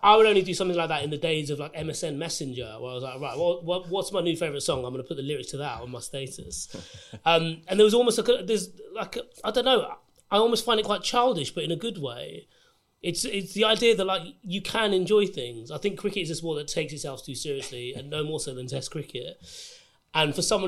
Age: 30-49